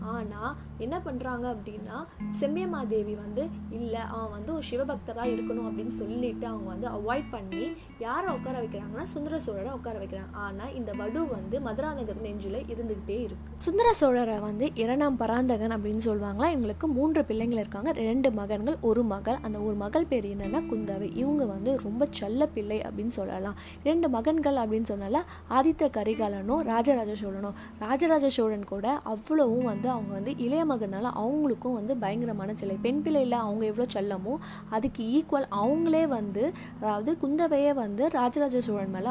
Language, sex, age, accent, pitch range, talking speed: Tamil, female, 20-39, native, 210-280 Hz, 125 wpm